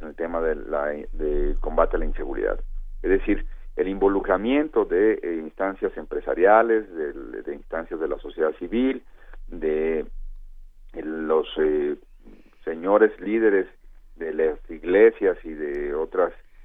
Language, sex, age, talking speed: Spanish, male, 50-69, 125 wpm